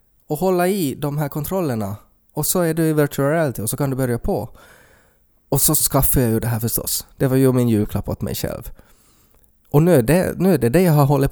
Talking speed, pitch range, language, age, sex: 240 wpm, 110-145 Hz, Swedish, 20-39, male